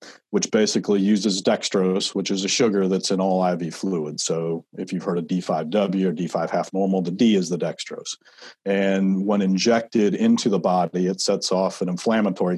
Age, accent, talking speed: 40-59, American, 185 wpm